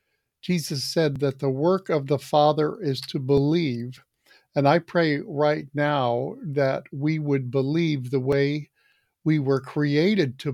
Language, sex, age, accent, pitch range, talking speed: English, male, 50-69, American, 140-160 Hz, 150 wpm